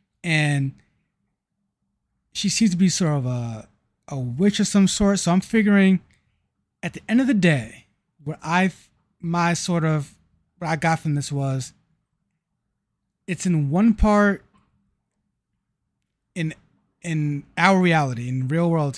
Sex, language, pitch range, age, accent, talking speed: male, English, 140-170 Hz, 30-49, American, 140 wpm